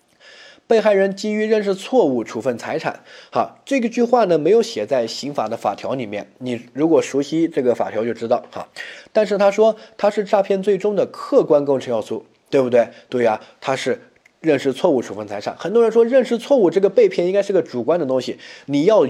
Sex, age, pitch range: male, 20-39, 135-215 Hz